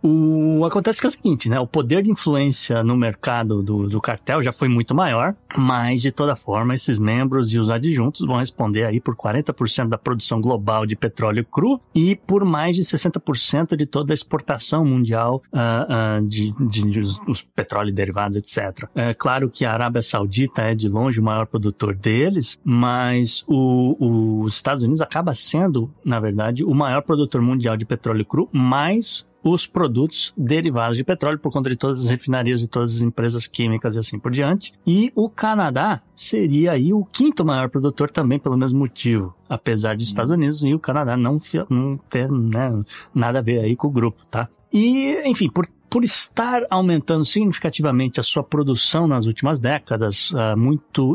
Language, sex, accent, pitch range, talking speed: Portuguese, male, Brazilian, 115-155 Hz, 180 wpm